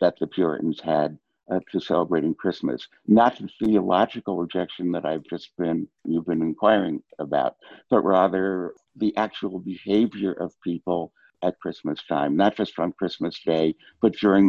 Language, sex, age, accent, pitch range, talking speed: English, male, 60-79, American, 90-105 Hz, 155 wpm